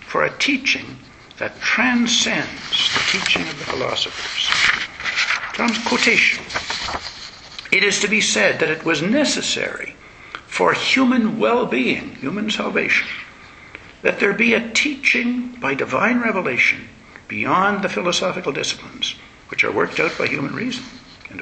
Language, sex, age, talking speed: English, male, 60-79, 125 wpm